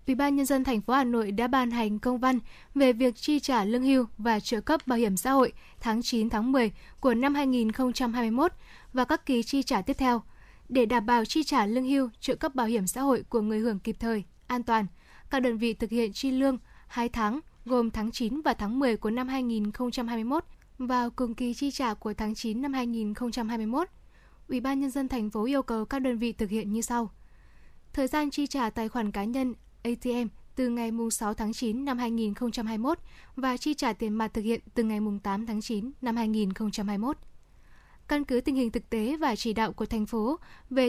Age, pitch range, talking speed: 10-29, 220-260 Hz, 215 wpm